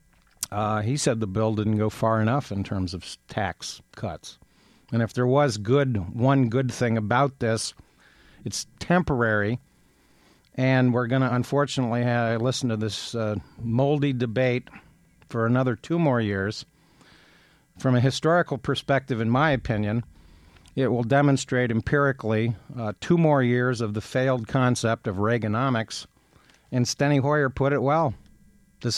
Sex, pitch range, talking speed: male, 110-135 Hz, 145 wpm